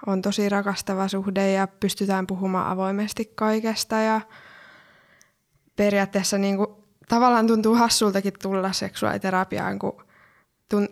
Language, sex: Finnish, female